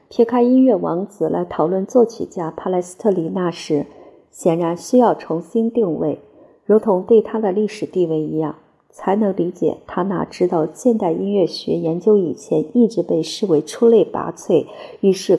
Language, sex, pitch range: Chinese, female, 165-220 Hz